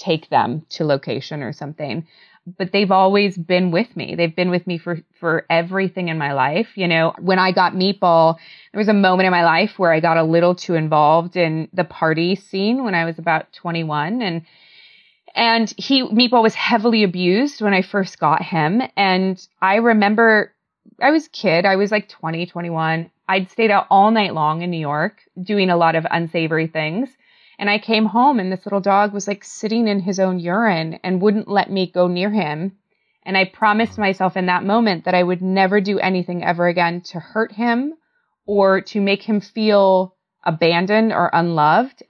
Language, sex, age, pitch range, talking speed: English, female, 20-39, 170-205 Hz, 195 wpm